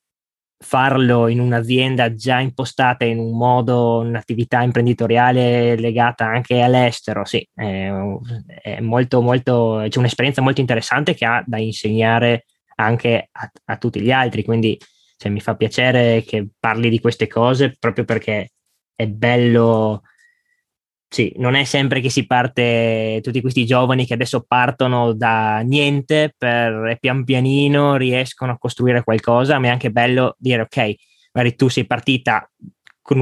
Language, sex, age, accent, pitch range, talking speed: Italian, male, 20-39, native, 115-130 Hz, 145 wpm